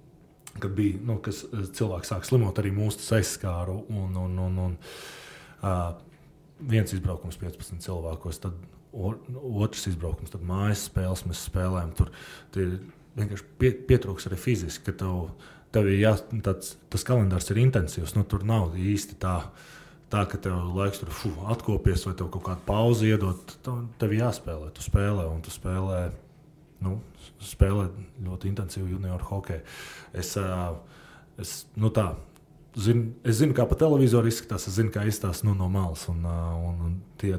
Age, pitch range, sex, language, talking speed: 20-39, 90-115 Hz, male, English, 150 wpm